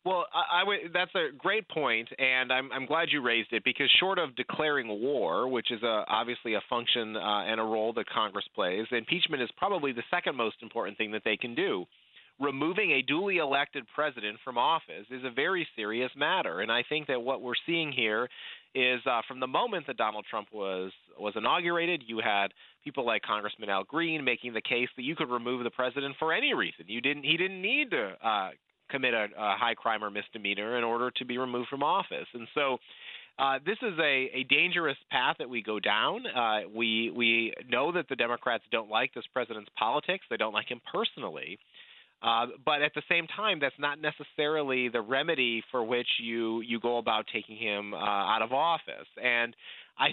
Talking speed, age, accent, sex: 205 wpm, 30-49, American, male